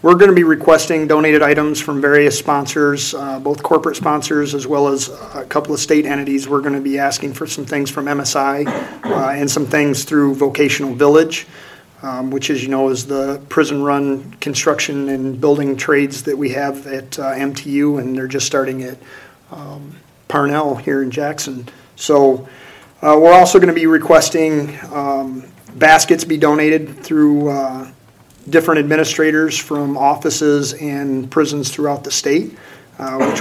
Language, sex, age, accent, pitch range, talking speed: English, male, 40-59, American, 140-155 Hz, 165 wpm